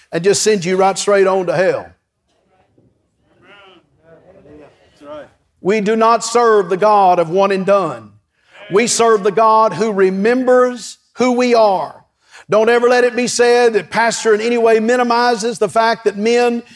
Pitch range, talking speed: 200-245 Hz, 160 wpm